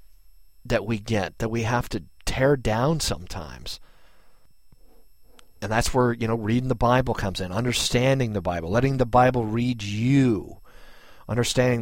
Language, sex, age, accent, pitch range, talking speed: English, male, 40-59, American, 90-120 Hz, 145 wpm